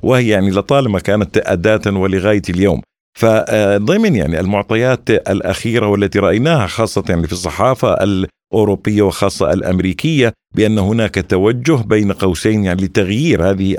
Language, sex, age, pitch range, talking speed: Arabic, male, 50-69, 95-120 Hz, 120 wpm